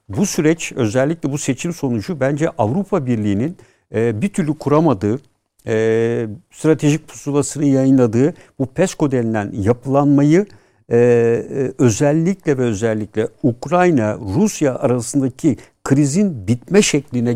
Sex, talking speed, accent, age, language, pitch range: male, 95 wpm, native, 60-79, Turkish, 110-150 Hz